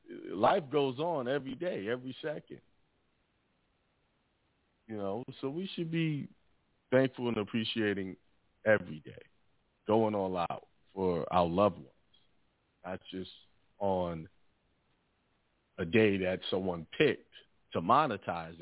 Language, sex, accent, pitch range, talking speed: English, male, American, 95-140 Hz, 115 wpm